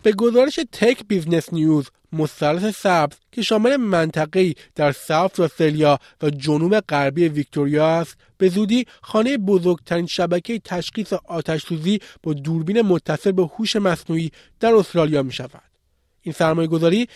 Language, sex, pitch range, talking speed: Persian, male, 155-200 Hz, 130 wpm